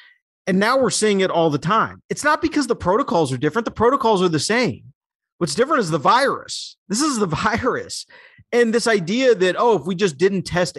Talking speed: 215 wpm